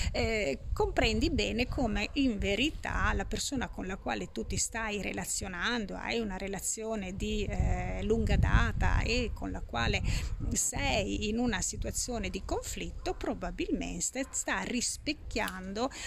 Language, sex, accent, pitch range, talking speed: Italian, female, native, 195-280 Hz, 130 wpm